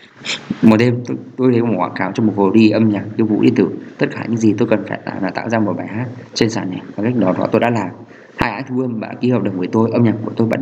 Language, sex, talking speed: Vietnamese, male, 310 wpm